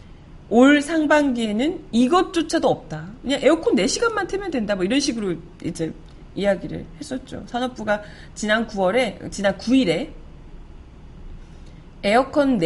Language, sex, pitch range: Korean, female, 180-260 Hz